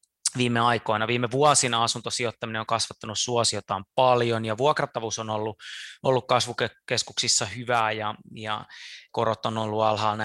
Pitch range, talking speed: 115-150 Hz, 130 wpm